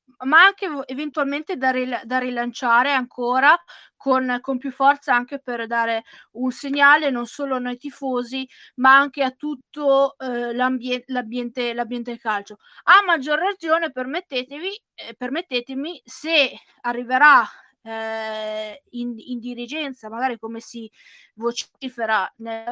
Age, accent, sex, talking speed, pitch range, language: 20-39, native, female, 125 wpm, 240-285 Hz, Italian